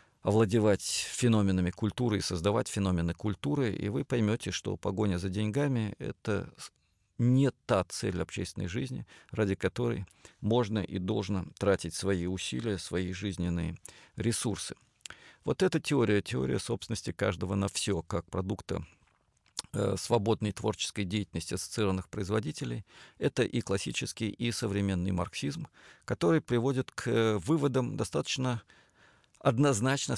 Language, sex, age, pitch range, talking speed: Russian, male, 40-59, 95-120 Hz, 115 wpm